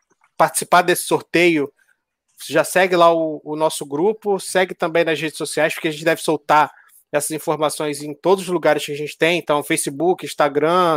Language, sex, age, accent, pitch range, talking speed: Portuguese, male, 20-39, Brazilian, 155-185 Hz, 185 wpm